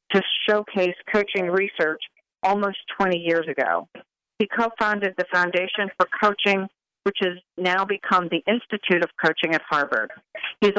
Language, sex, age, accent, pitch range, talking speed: English, female, 50-69, American, 170-195 Hz, 145 wpm